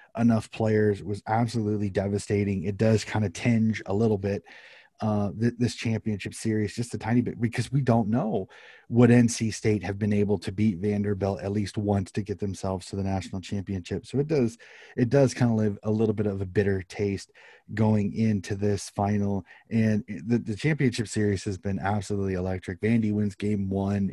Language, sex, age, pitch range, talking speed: English, male, 30-49, 100-115 Hz, 190 wpm